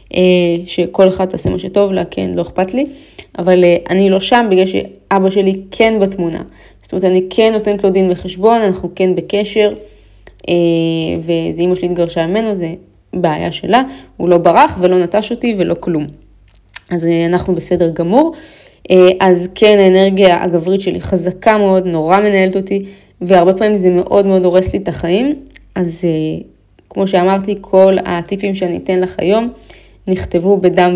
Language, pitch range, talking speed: Hebrew, 180-200 Hz, 155 wpm